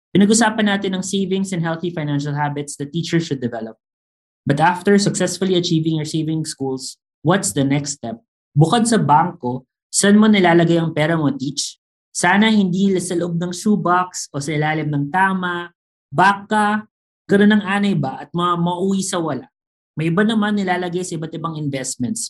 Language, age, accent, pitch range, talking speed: English, 20-39, Filipino, 140-180 Hz, 165 wpm